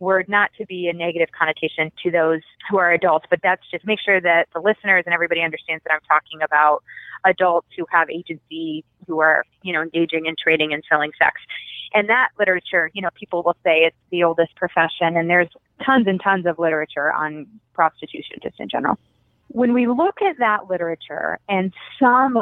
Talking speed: 195 wpm